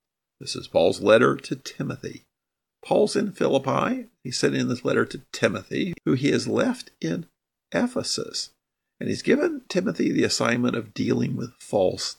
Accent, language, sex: American, English, male